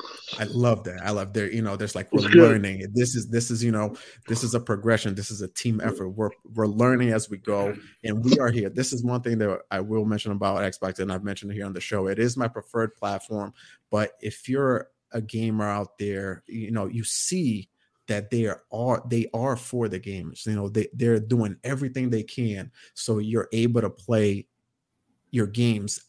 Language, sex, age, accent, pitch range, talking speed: English, male, 30-49, American, 105-125 Hz, 220 wpm